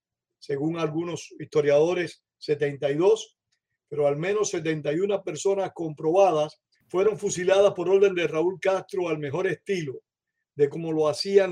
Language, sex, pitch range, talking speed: Spanish, male, 155-200 Hz, 125 wpm